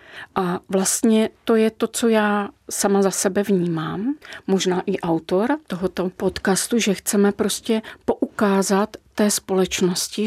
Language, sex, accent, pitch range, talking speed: Czech, female, native, 180-210 Hz, 130 wpm